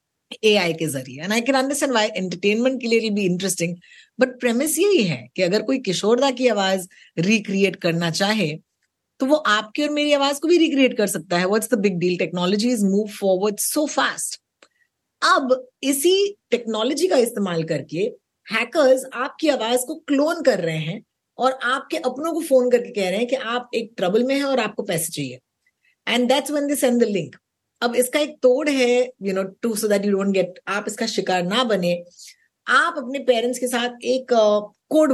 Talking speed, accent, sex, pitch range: 155 wpm, native, female, 195-265 Hz